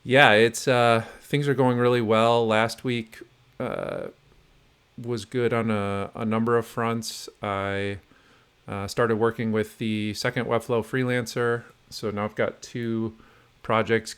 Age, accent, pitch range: 40-59, American, 100-120 Hz